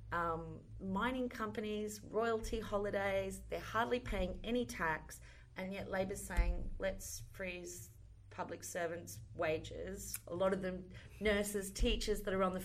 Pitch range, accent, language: 165-210 Hz, Australian, English